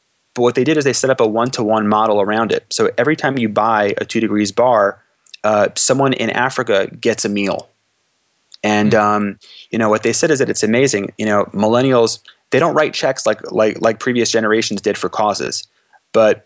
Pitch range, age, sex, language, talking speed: 105-125 Hz, 30-49, male, English, 200 wpm